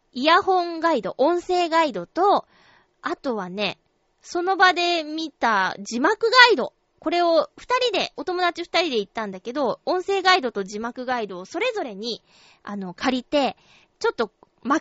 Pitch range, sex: 230-365 Hz, female